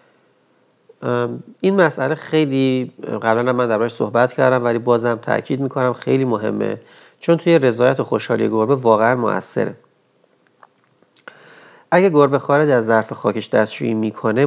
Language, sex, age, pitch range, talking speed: Persian, male, 40-59, 115-155 Hz, 125 wpm